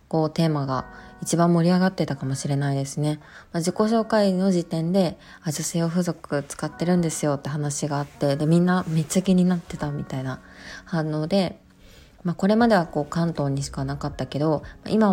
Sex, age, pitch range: female, 20-39, 150-185 Hz